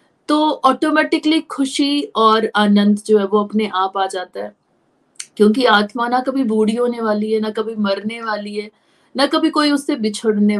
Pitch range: 210-270 Hz